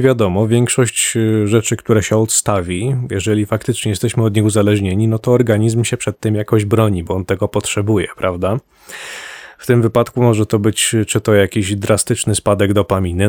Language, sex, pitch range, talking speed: Polish, male, 100-120 Hz, 165 wpm